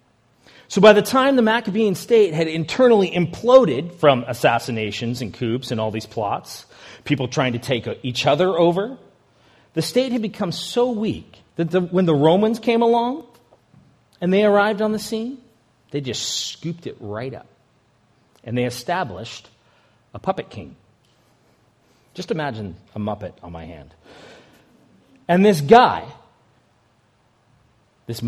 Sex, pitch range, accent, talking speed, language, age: male, 120-185 Hz, American, 140 wpm, English, 40-59